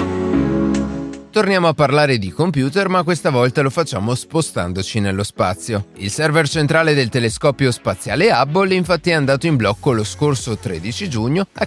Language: Italian